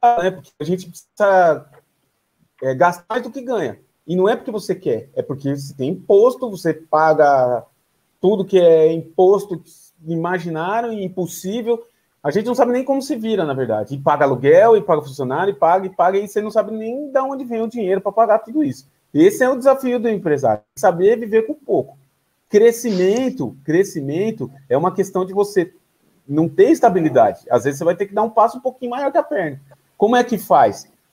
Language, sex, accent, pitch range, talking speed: Portuguese, male, Brazilian, 165-225 Hz, 195 wpm